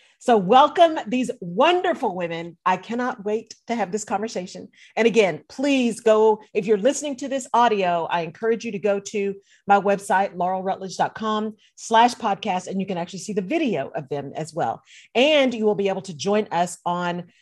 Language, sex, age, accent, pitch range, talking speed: English, female, 40-59, American, 175-230 Hz, 185 wpm